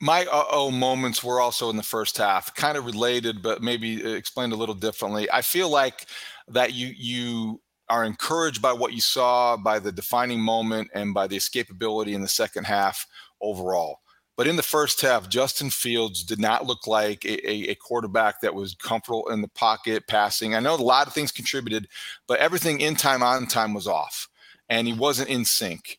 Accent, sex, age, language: American, male, 40-59, English